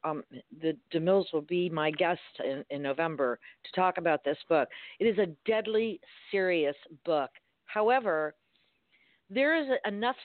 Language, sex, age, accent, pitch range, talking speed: English, female, 50-69, American, 165-215 Hz, 145 wpm